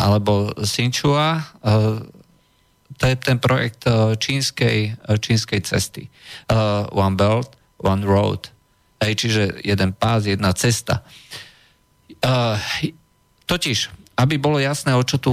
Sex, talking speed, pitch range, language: male, 100 wpm, 105-130 Hz, Slovak